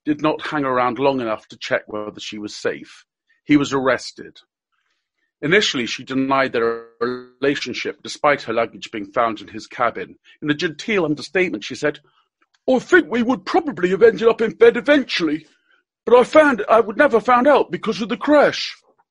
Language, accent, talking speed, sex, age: English, British, 180 wpm, male, 50-69